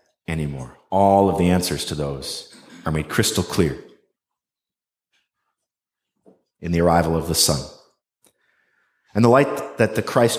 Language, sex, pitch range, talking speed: English, male, 95-135 Hz, 135 wpm